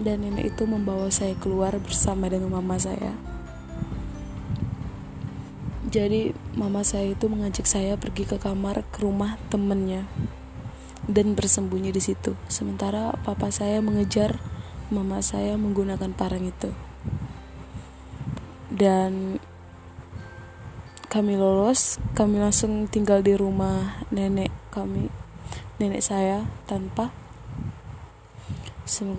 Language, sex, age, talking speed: Indonesian, female, 20-39, 100 wpm